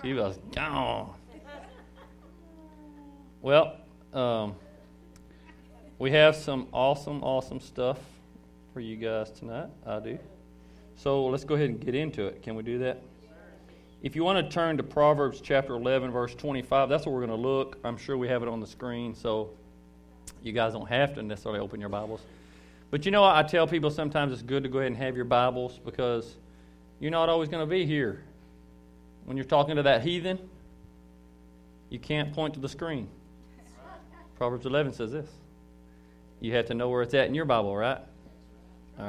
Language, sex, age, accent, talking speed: English, male, 40-59, American, 180 wpm